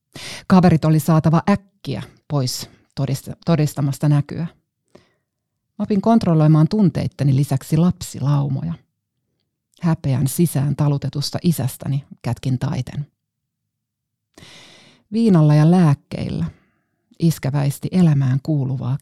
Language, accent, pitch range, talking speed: Finnish, native, 130-170 Hz, 75 wpm